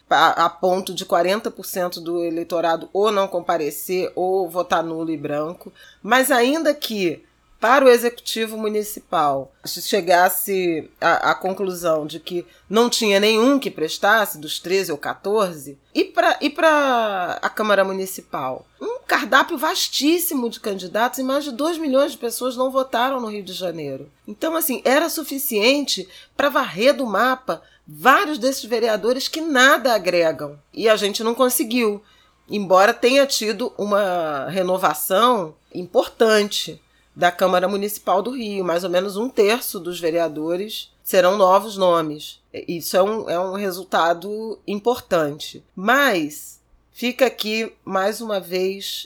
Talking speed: 140 wpm